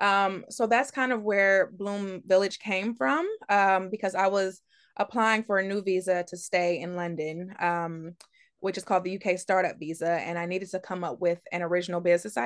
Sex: female